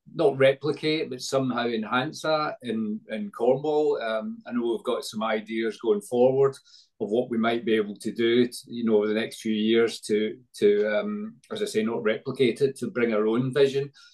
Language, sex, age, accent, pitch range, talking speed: English, male, 40-59, British, 110-135 Hz, 205 wpm